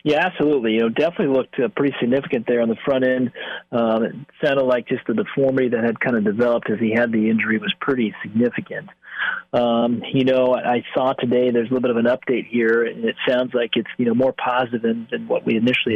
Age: 40-59